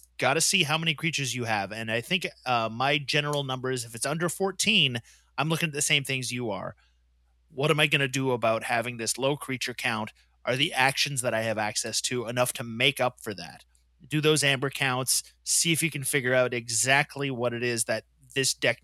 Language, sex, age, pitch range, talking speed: English, male, 30-49, 120-150 Hz, 225 wpm